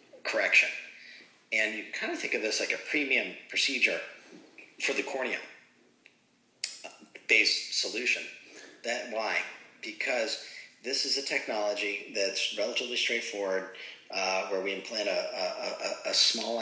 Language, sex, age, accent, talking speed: English, male, 40-59, American, 125 wpm